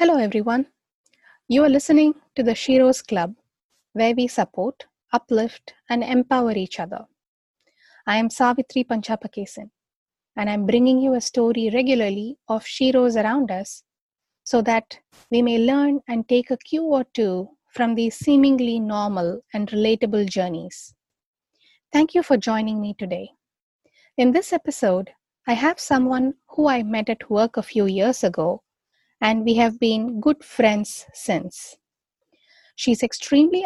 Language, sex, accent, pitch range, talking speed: English, female, Indian, 215-260 Hz, 145 wpm